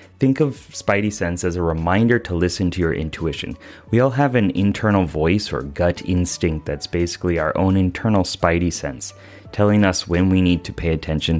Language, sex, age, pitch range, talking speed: English, male, 30-49, 85-105 Hz, 190 wpm